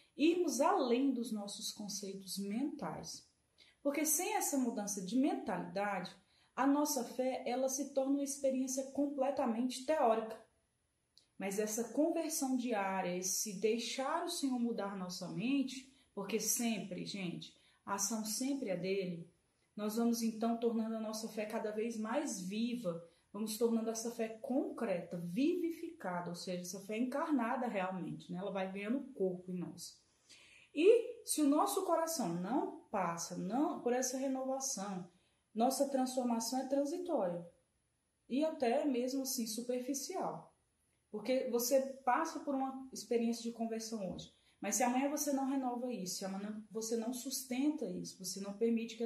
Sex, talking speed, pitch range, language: female, 145 wpm, 200-270 Hz, Portuguese